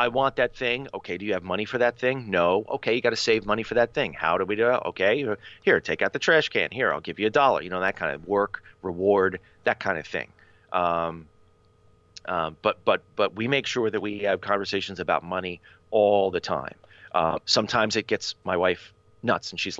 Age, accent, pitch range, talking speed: 30-49, American, 90-115 Hz, 235 wpm